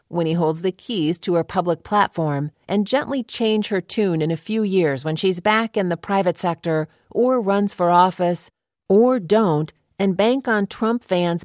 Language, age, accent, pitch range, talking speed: English, 40-59, American, 160-210 Hz, 190 wpm